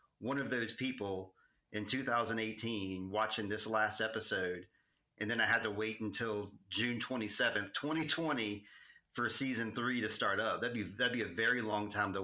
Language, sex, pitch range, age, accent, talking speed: English, male, 105-130 Hz, 40-59, American, 170 wpm